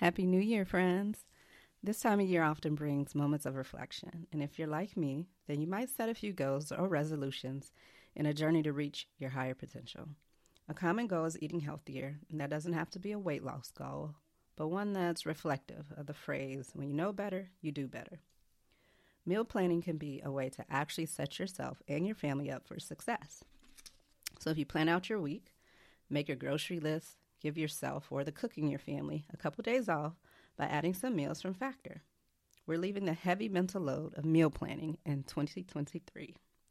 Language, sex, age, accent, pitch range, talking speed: English, female, 30-49, American, 145-185 Hz, 195 wpm